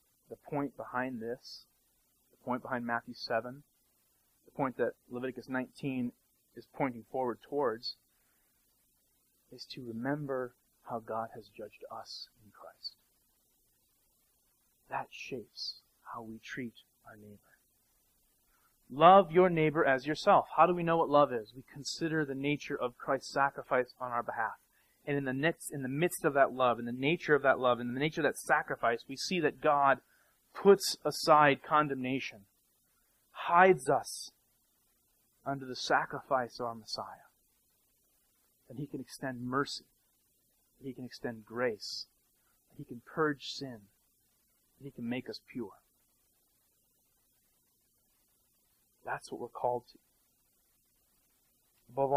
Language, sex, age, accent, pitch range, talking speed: English, male, 30-49, American, 120-145 Hz, 135 wpm